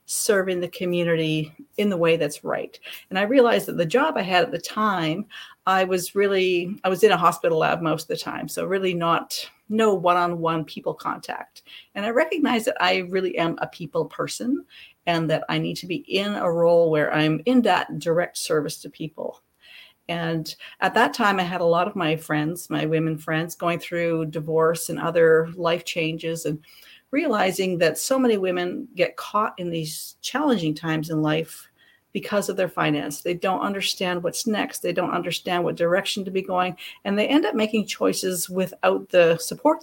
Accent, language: American, English